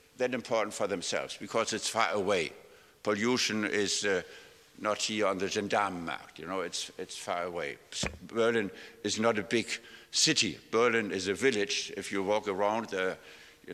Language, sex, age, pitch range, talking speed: German, male, 60-79, 100-125 Hz, 165 wpm